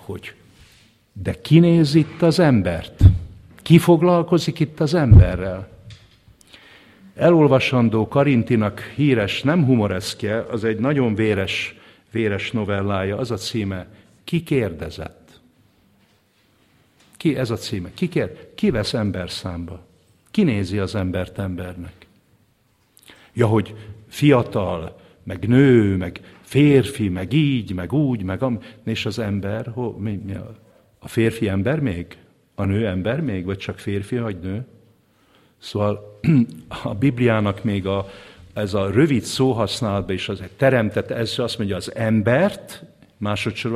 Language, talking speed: English, 130 wpm